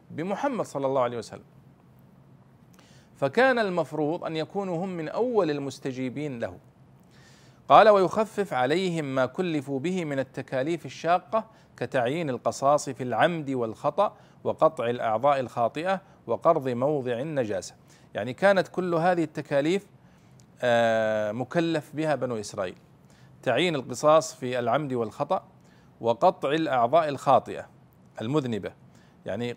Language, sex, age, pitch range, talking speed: Arabic, male, 40-59, 125-170 Hz, 110 wpm